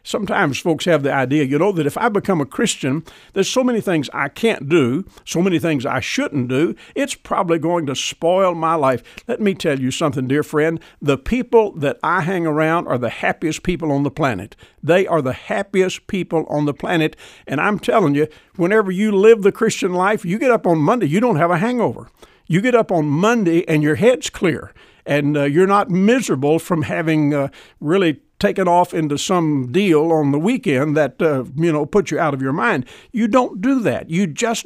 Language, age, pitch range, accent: English, 60-79, 150-200 Hz, American